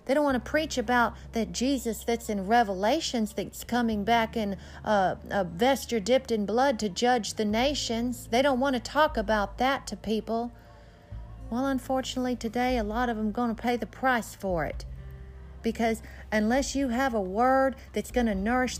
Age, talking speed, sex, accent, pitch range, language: 40-59, 190 wpm, female, American, 200-255 Hz, English